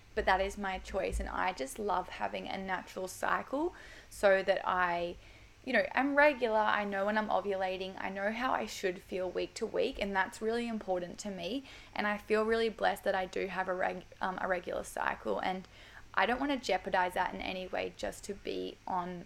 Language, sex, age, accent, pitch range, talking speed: English, female, 10-29, Australian, 185-205 Hz, 210 wpm